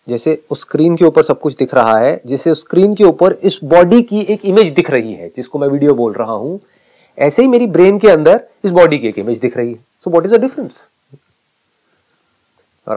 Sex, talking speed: male, 225 wpm